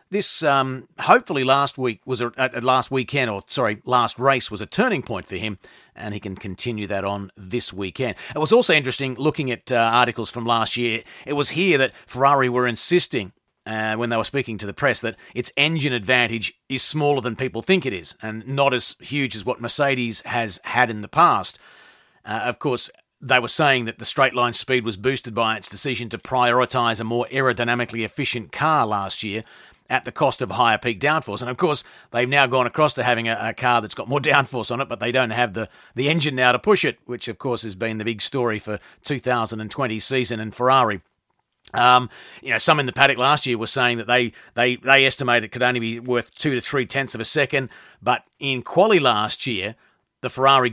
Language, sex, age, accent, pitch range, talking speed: English, male, 40-59, Australian, 115-135 Hz, 220 wpm